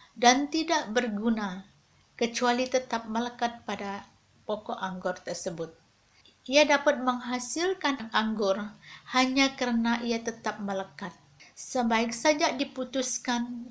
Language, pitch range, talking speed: Malay, 215-255 Hz, 95 wpm